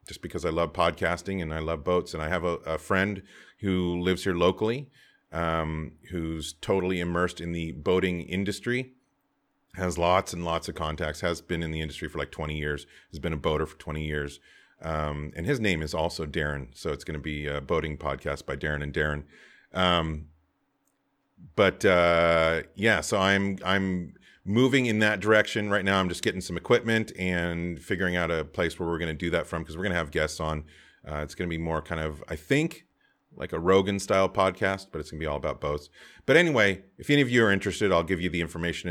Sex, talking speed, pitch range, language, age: male, 215 wpm, 80-95 Hz, English, 40-59